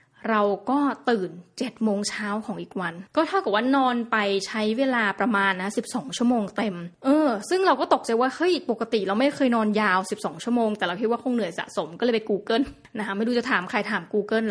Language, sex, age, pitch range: Thai, female, 20-39, 205-255 Hz